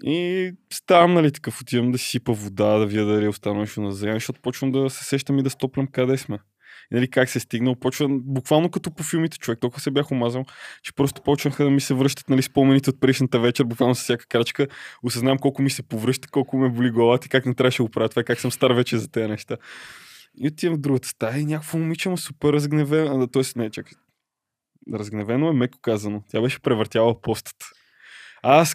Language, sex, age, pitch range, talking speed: Bulgarian, male, 20-39, 115-145 Hz, 215 wpm